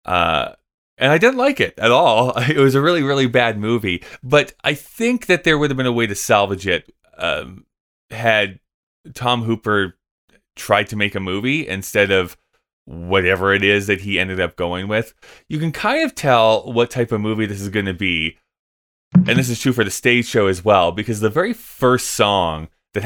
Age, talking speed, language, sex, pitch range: 20-39, 205 wpm, English, male, 105-130 Hz